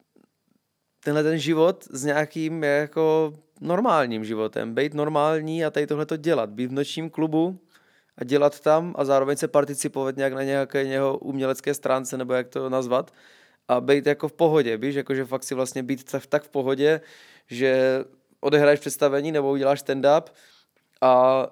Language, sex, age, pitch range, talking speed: Czech, male, 20-39, 130-150 Hz, 160 wpm